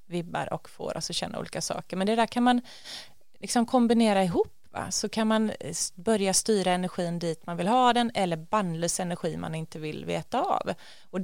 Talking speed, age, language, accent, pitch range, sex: 190 wpm, 30-49, Swedish, native, 175-220 Hz, female